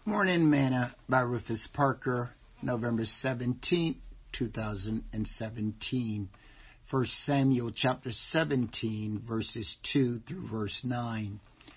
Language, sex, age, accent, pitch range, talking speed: English, male, 50-69, American, 115-135 Hz, 90 wpm